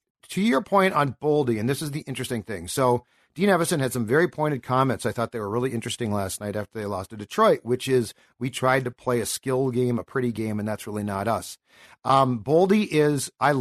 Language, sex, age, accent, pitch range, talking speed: English, male, 50-69, American, 125-160 Hz, 235 wpm